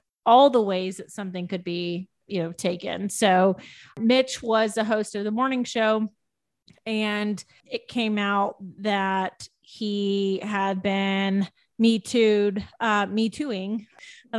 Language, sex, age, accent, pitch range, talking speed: English, female, 30-49, American, 200-230 Hz, 140 wpm